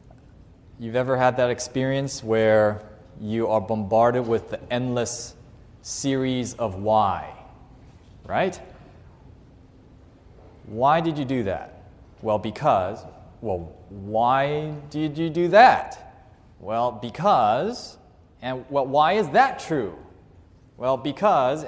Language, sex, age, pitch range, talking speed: English, male, 30-49, 110-135 Hz, 110 wpm